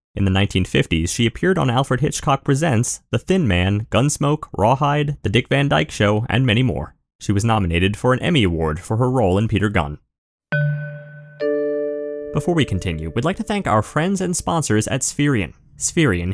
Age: 30-49